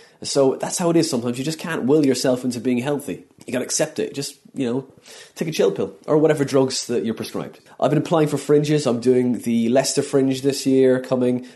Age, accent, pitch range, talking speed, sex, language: 30-49, British, 110-140 Hz, 235 wpm, male, English